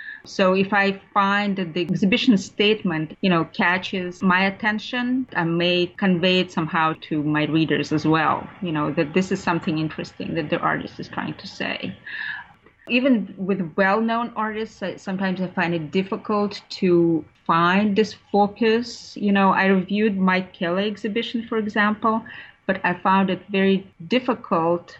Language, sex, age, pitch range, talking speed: English, female, 30-49, 170-205 Hz, 155 wpm